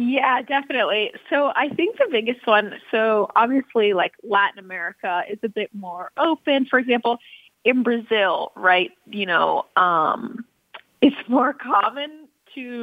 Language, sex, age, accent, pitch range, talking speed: English, female, 20-39, American, 195-245 Hz, 140 wpm